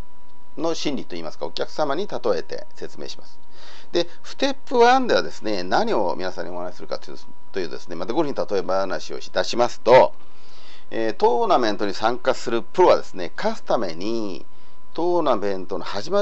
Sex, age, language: male, 40-59, Japanese